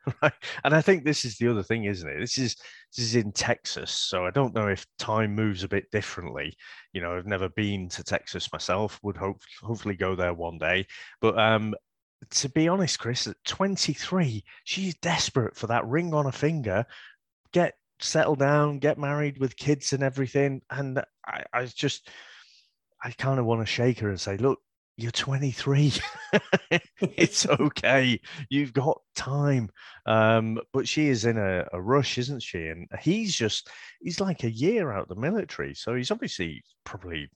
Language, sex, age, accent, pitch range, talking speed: English, male, 30-49, British, 100-140 Hz, 180 wpm